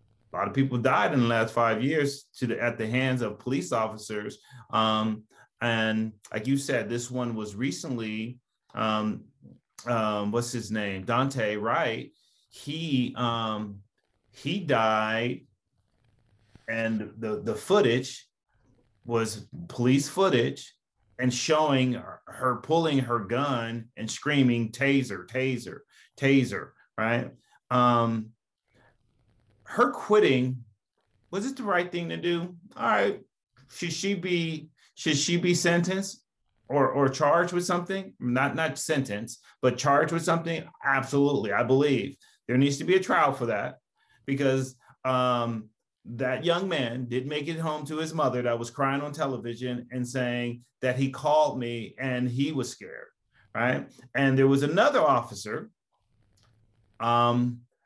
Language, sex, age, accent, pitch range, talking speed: English, male, 30-49, American, 115-140 Hz, 140 wpm